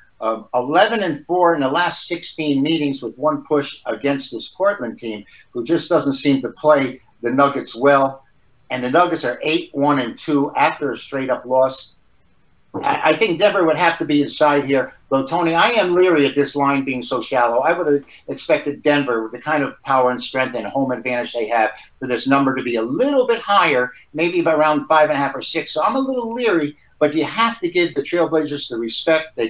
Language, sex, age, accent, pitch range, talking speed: English, male, 50-69, American, 130-165 Hz, 215 wpm